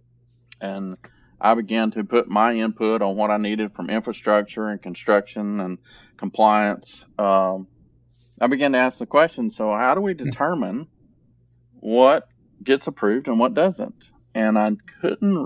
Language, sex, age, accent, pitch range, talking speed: English, male, 40-59, American, 105-120 Hz, 150 wpm